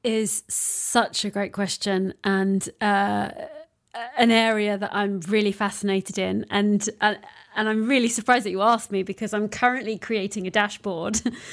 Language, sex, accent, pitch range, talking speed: English, female, British, 205-240 Hz, 155 wpm